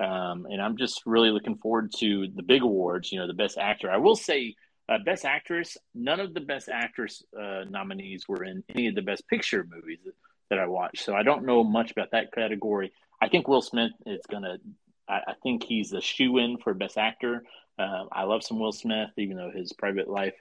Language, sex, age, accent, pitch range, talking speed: English, male, 30-49, American, 100-130 Hz, 220 wpm